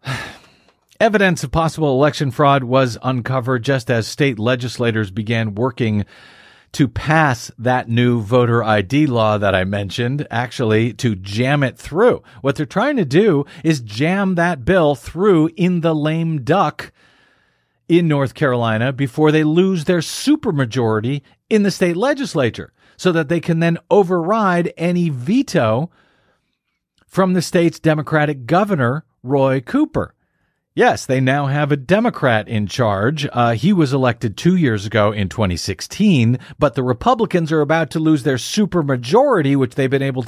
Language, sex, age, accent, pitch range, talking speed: English, male, 40-59, American, 120-165 Hz, 150 wpm